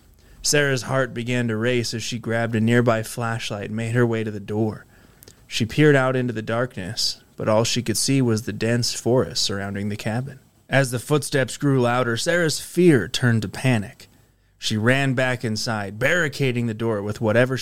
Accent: American